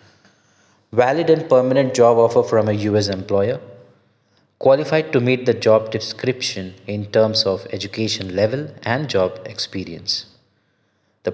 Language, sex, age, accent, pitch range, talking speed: English, male, 20-39, Indian, 100-120 Hz, 125 wpm